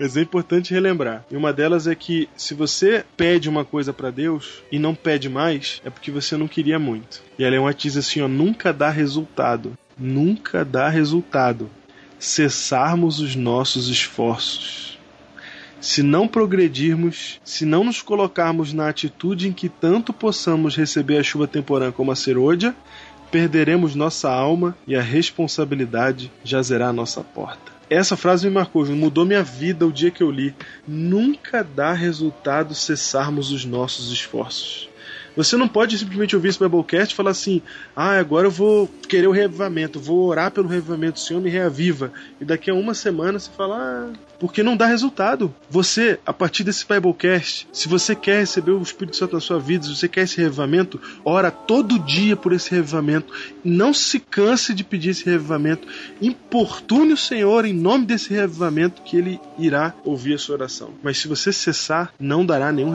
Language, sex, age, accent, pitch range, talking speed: Portuguese, male, 20-39, Brazilian, 145-185 Hz, 175 wpm